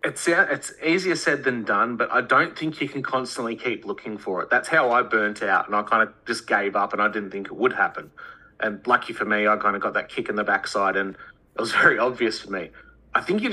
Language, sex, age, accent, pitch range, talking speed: English, male, 30-49, Australian, 110-130 Hz, 260 wpm